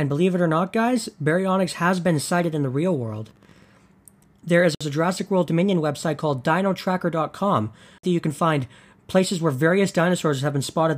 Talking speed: 185 wpm